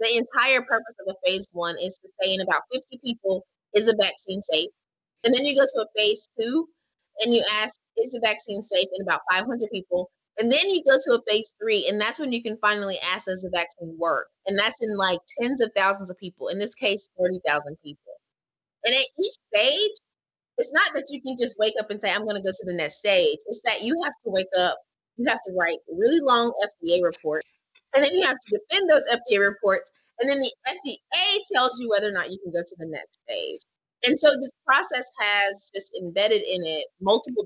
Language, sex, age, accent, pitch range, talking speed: English, female, 20-39, American, 190-255 Hz, 230 wpm